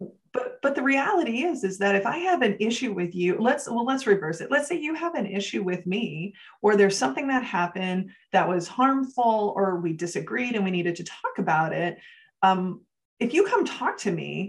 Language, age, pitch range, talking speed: English, 30-49, 175-235 Hz, 215 wpm